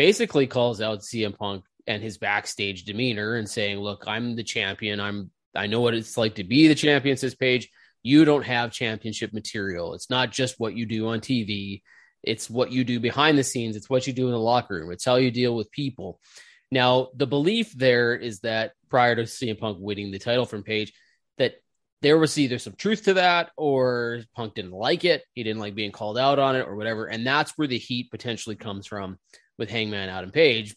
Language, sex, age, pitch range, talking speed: English, male, 20-39, 105-130 Hz, 215 wpm